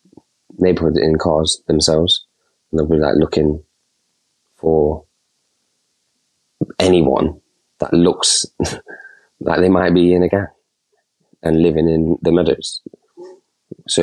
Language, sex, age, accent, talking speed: English, male, 20-39, British, 110 wpm